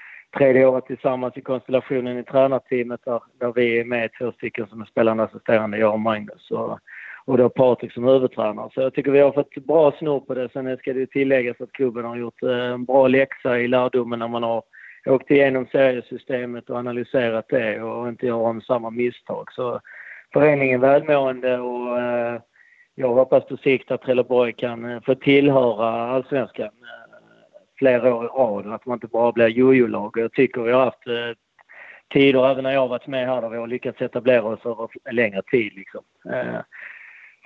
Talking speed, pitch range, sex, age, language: 185 wpm, 120-130 Hz, male, 30-49, Swedish